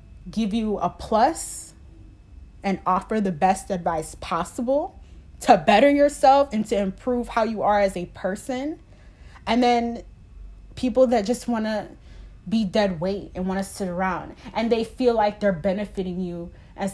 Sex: female